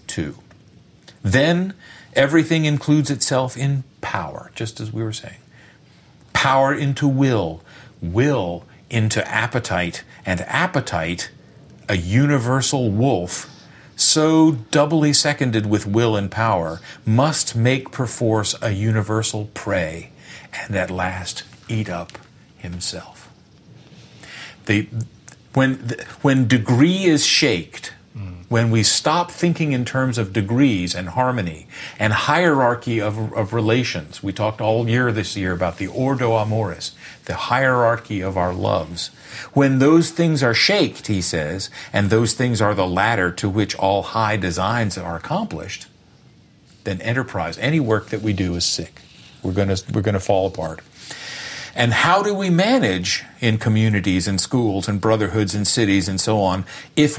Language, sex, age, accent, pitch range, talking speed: English, male, 50-69, American, 100-135 Hz, 135 wpm